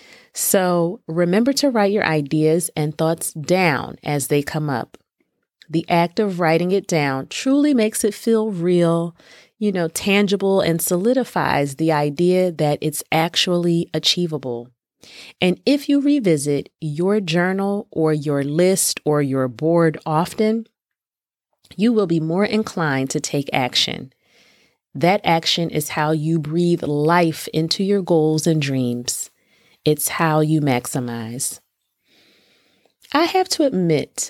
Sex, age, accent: female, 30-49, American